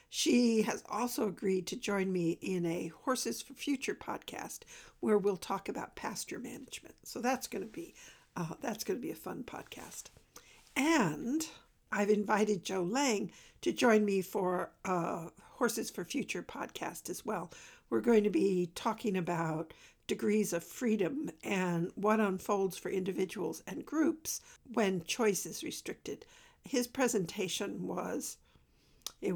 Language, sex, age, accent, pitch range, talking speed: English, female, 60-79, American, 190-250 Hz, 145 wpm